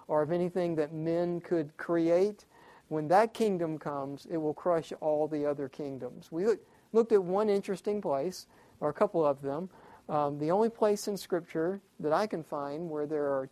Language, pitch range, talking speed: English, 150-185 Hz, 185 wpm